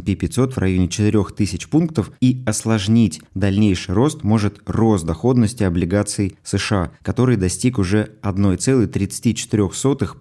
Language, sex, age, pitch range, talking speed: Russian, male, 20-39, 95-115 Hz, 105 wpm